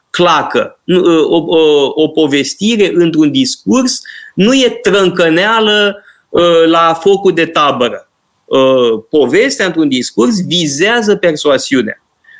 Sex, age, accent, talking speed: male, 30-49, native, 85 wpm